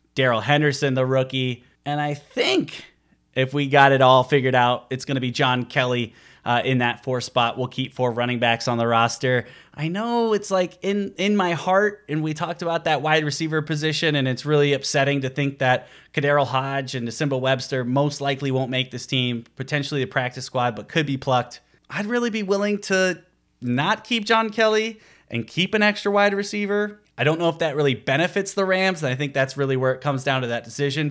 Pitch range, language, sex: 125-150 Hz, English, male